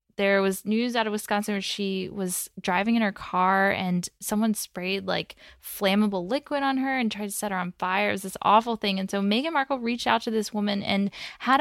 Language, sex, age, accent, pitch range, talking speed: English, female, 10-29, American, 185-215 Hz, 225 wpm